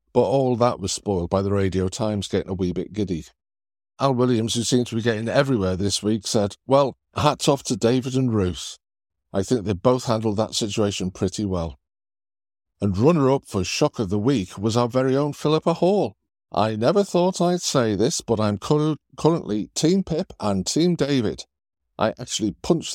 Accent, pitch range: British, 95-140 Hz